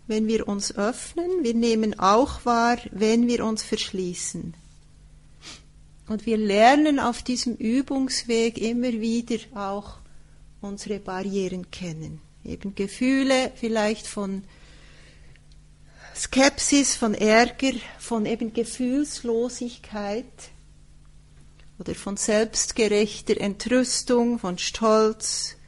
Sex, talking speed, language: female, 95 wpm, English